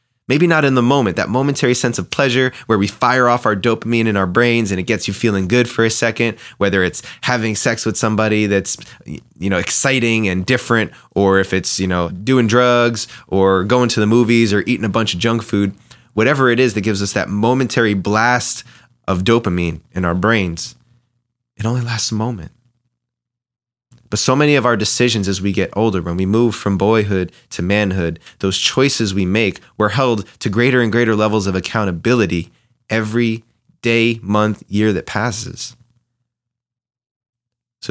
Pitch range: 100-120 Hz